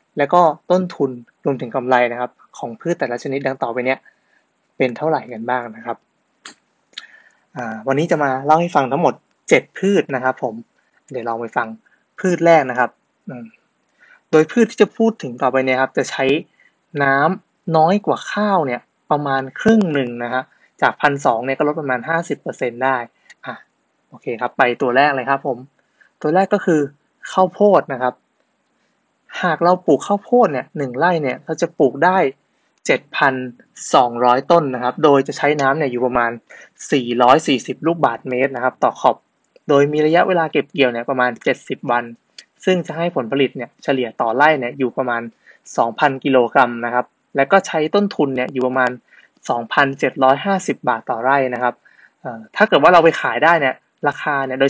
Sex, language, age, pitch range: male, Thai, 20-39, 125-160 Hz